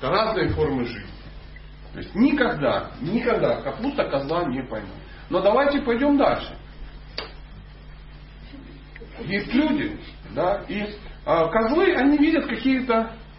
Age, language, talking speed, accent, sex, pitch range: 40-59, Russian, 110 wpm, native, male, 180-285 Hz